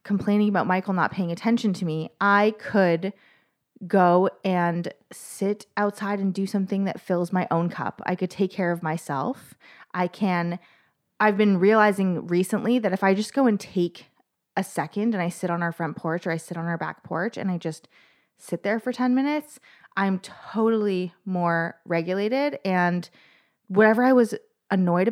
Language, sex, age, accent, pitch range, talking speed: English, female, 20-39, American, 175-210 Hz, 180 wpm